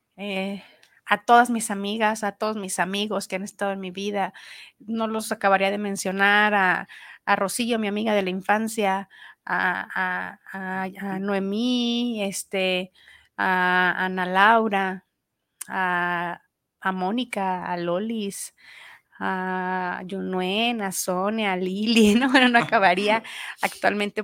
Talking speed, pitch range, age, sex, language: 130 wpm, 185-210 Hz, 30-49, female, Spanish